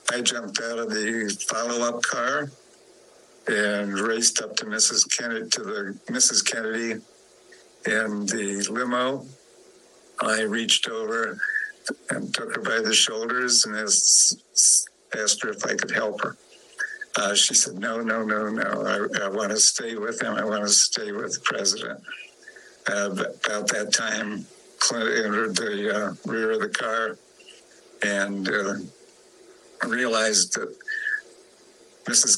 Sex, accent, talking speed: male, American, 140 wpm